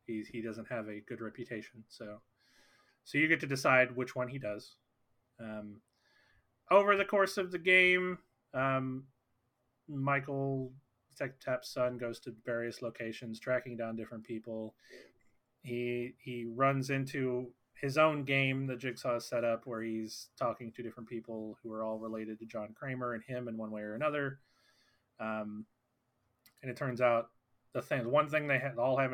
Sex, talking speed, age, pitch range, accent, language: male, 165 wpm, 30-49, 115-130 Hz, American, English